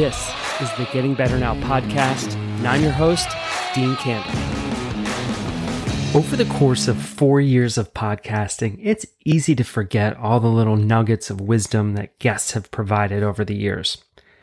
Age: 30-49